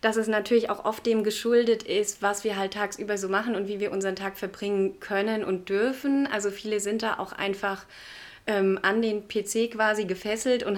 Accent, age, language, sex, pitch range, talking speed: German, 30-49, German, female, 195-225 Hz, 200 wpm